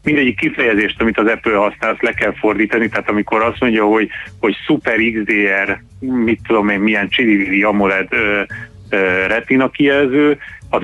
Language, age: Hungarian, 30-49